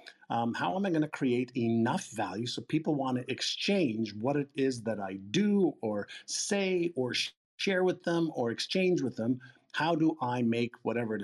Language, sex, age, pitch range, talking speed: English, male, 50-69, 115-165 Hz, 190 wpm